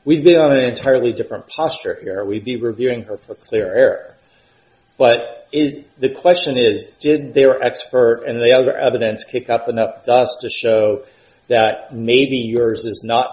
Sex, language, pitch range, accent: male, English, 110-160 Hz, American